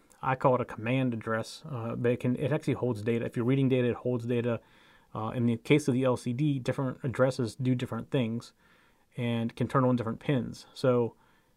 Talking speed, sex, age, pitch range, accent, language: 200 wpm, male, 30-49, 120-135 Hz, American, English